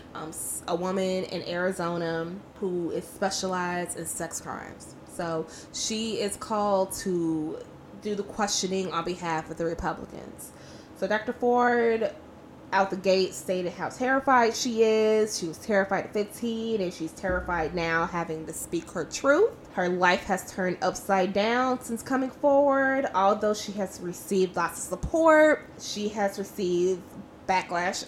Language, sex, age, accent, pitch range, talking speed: English, female, 20-39, American, 170-210 Hz, 145 wpm